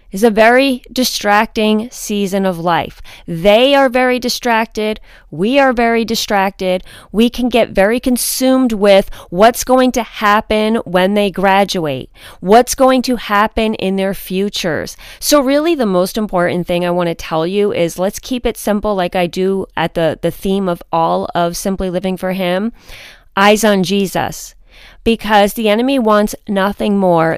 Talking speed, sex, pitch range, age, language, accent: 160 wpm, female, 180-230 Hz, 30-49, English, American